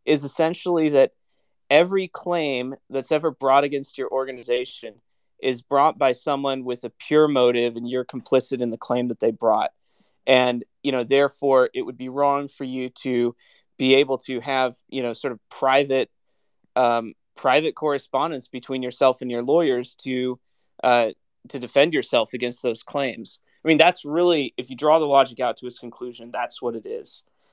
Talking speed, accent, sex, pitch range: 175 wpm, American, male, 125-140 Hz